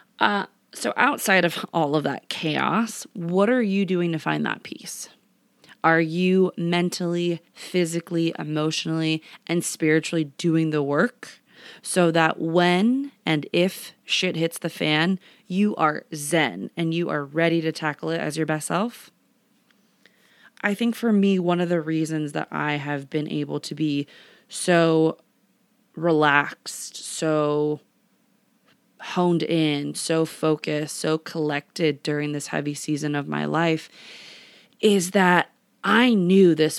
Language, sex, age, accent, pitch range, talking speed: English, female, 20-39, American, 155-185 Hz, 140 wpm